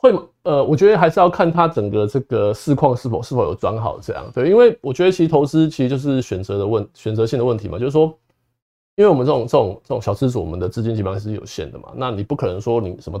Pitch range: 105-145 Hz